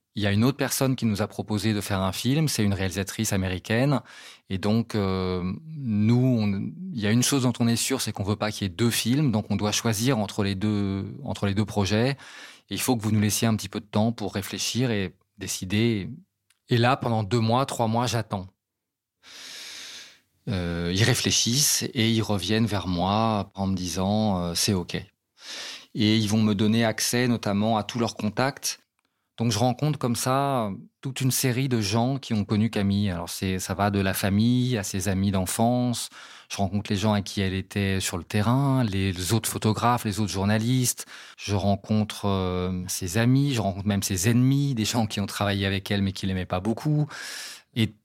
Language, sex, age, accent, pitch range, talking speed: French, male, 20-39, French, 100-120 Hz, 210 wpm